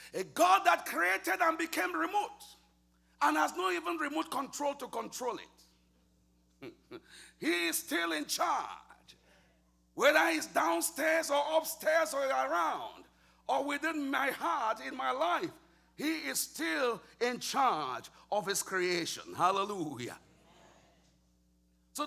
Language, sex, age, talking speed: English, male, 50-69, 120 wpm